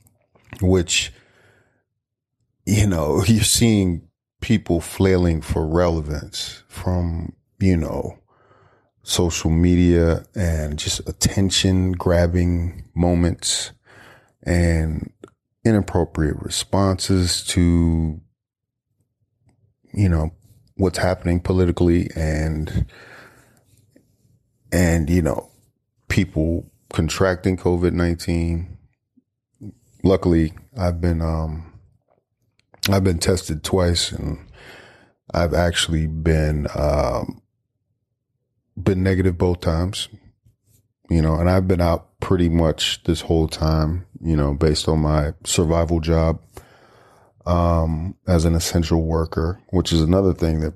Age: 30-49